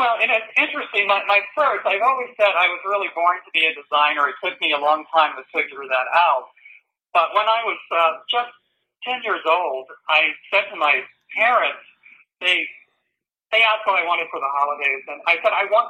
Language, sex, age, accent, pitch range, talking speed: English, male, 50-69, American, 160-225 Hz, 210 wpm